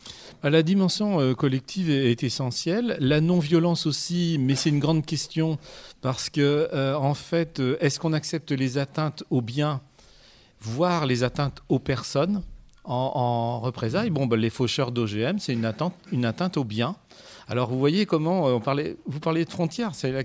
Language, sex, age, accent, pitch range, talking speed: French, male, 40-59, French, 120-155 Hz, 165 wpm